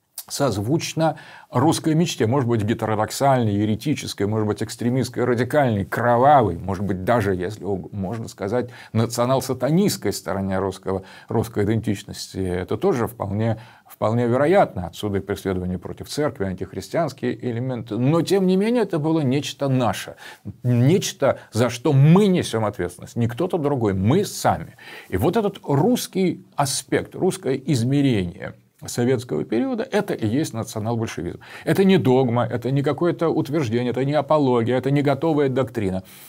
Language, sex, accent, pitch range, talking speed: Russian, male, native, 110-160 Hz, 130 wpm